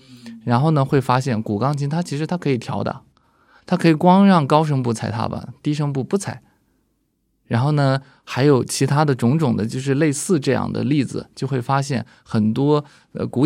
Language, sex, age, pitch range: Chinese, male, 20-39, 115-140 Hz